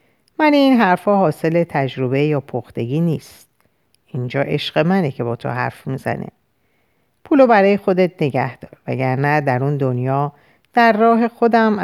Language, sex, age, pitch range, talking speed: Persian, female, 50-69, 135-195 Hz, 140 wpm